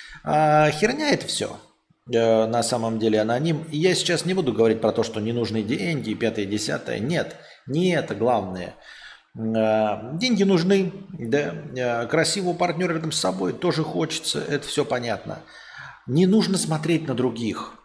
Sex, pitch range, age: male, 115-175 Hz, 30-49